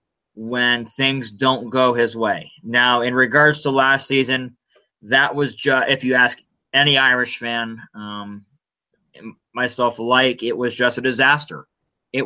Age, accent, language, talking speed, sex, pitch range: 30-49, American, English, 145 wpm, male, 125-145 Hz